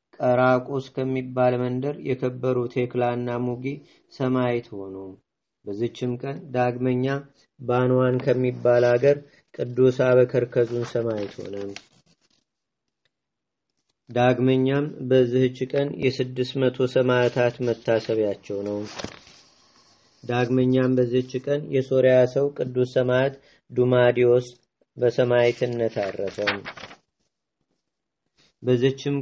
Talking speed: 65 wpm